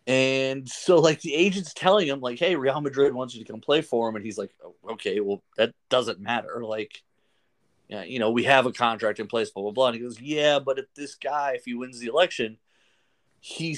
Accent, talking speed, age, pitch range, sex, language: American, 230 wpm, 30-49, 110-150 Hz, male, English